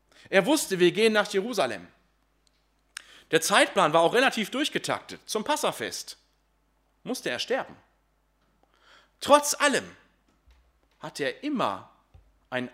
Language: German